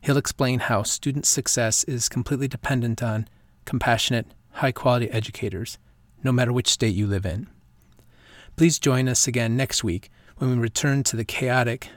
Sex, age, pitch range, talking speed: male, 40-59, 115-140 Hz, 155 wpm